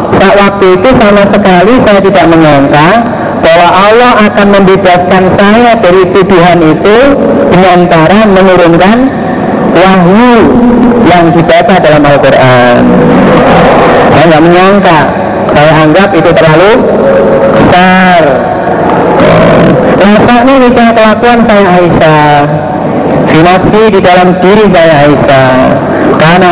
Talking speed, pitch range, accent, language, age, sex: 95 wpm, 160-215 Hz, native, Indonesian, 40-59, male